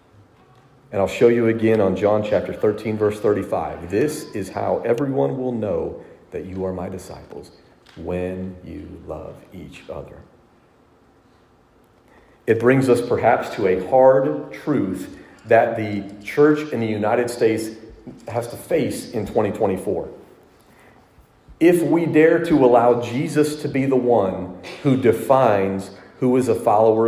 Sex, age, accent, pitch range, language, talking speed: male, 40-59, American, 105-145 Hz, English, 140 wpm